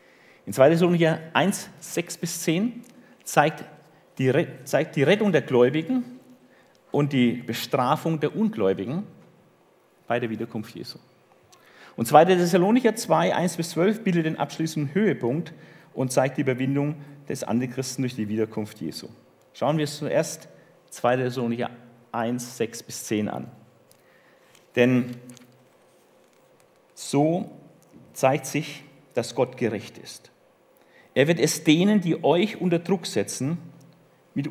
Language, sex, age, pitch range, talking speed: German, male, 40-59, 125-175 Hz, 125 wpm